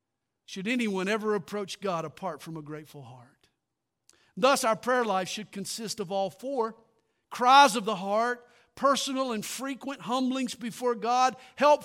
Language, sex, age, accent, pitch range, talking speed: English, male, 50-69, American, 185-275 Hz, 150 wpm